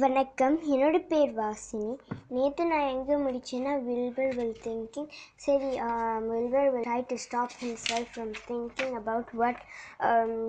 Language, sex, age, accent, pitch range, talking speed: Tamil, male, 20-39, native, 230-270 Hz, 160 wpm